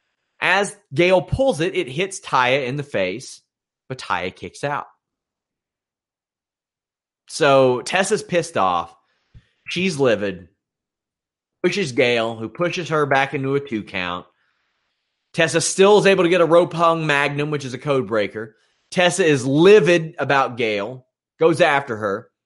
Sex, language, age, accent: male, English, 30-49, American